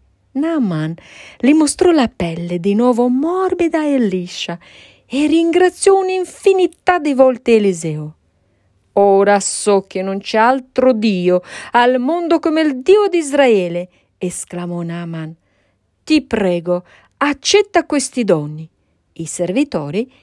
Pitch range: 170-280 Hz